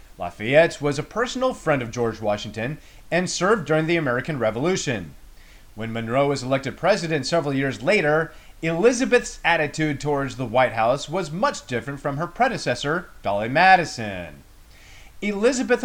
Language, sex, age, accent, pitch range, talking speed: English, male, 30-49, American, 125-180 Hz, 140 wpm